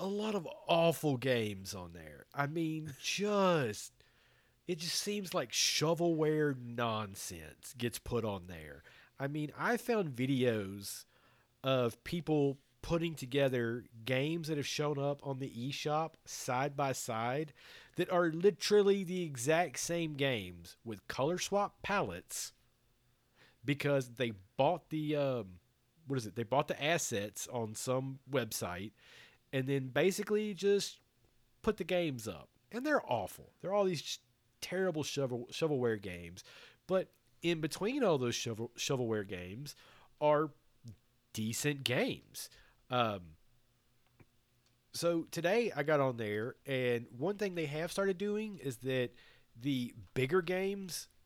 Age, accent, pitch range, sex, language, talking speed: 40-59, American, 120-165 Hz, male, English, 130 wpm